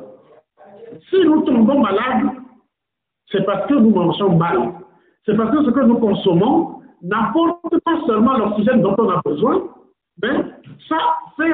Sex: male